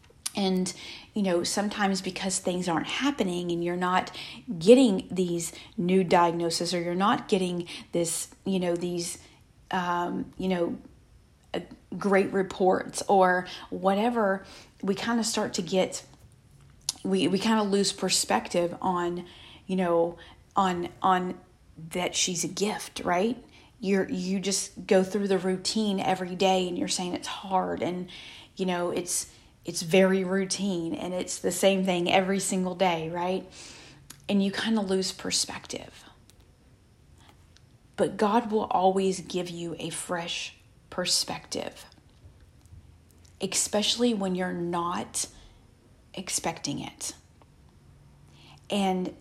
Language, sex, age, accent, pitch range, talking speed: English, female, 40-59, American, 175-195 Hz, 130 wpm